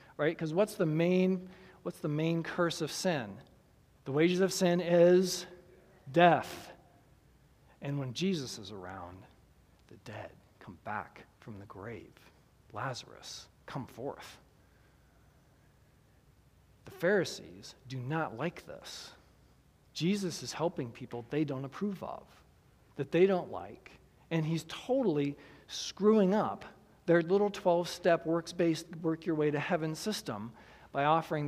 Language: English